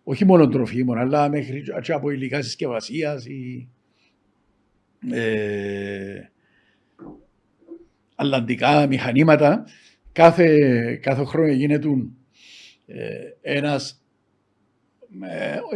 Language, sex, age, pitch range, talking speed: Greek, male, 60-79, 130-180 Hz, 70 wpm